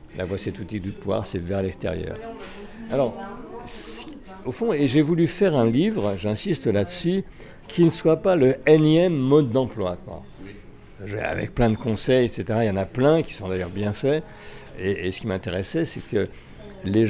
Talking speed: 195 wpm